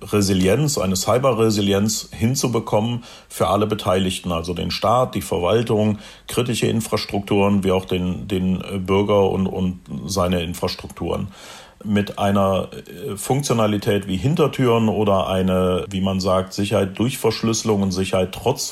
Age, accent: 40-59, German